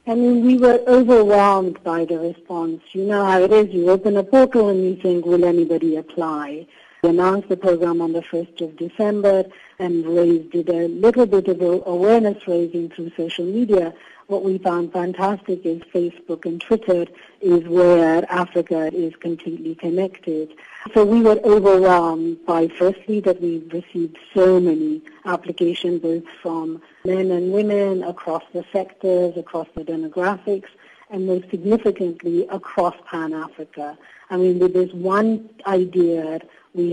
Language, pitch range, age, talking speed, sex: English, 170-200 Hz, 50-69, 150 wpm, female